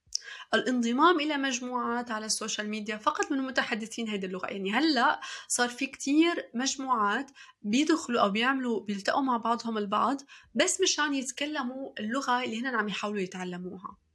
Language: Arabic